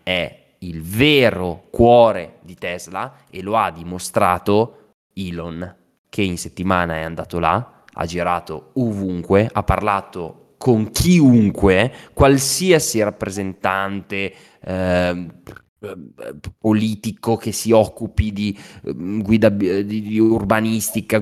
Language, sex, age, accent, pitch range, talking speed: Italian, male, 20-39, native, 90-115 Hz, 100 wpm